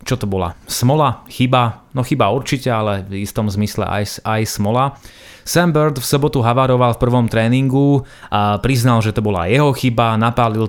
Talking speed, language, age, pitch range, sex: 175 wpm, Slovak, 30-49, 105-130 Hz, male